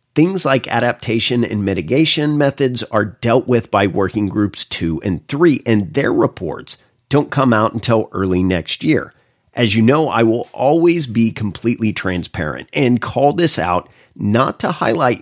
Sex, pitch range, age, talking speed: male, 100-135 Hz, 40-59, 160 wpm